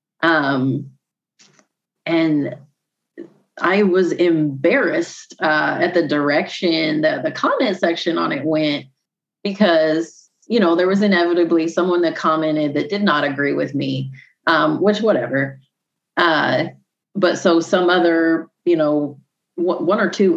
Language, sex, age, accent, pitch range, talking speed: English, female, 30-49, American, 150-205 Hz, 130 wpm